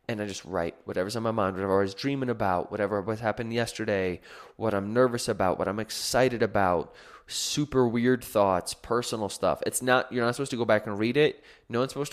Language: English